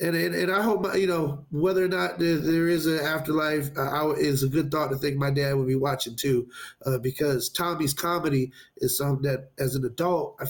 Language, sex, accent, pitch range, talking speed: English, male, American, 130-150 Hz, 235 wpm